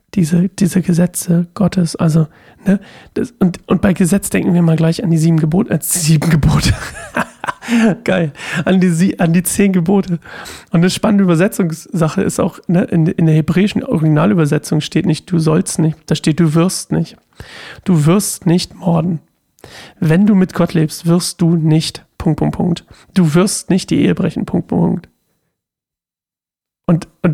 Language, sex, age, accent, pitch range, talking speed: German, male, 40-59, German, 165-195 Hz, 170 wpm